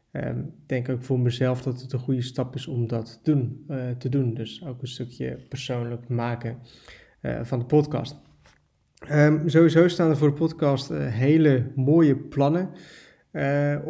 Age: 20-39